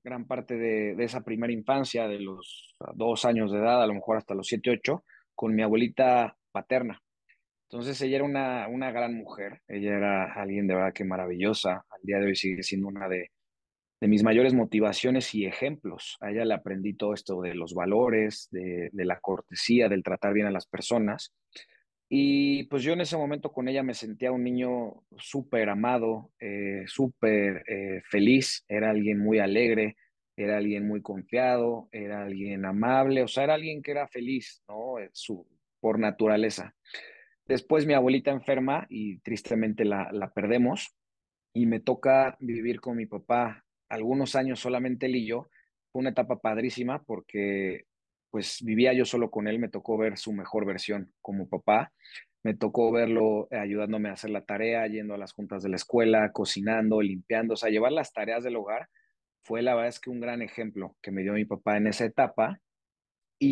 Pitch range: 105-125 Hz